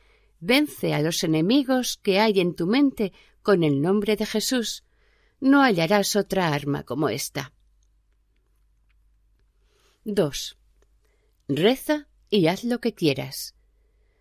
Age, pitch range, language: 50-69, 165-230 Hz, Spanish